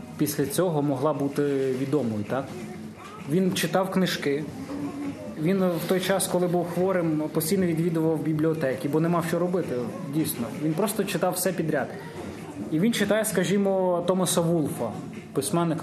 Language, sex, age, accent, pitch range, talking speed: Ukrainian, male, 20-39, native, 145-180 Hz, 135 wpm